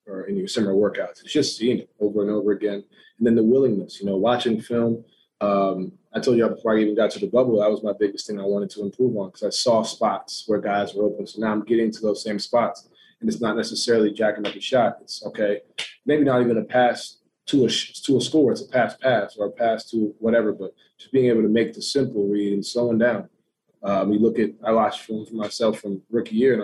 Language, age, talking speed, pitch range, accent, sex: English, 20-39, 255 wpm, 105-115 Hz, American, male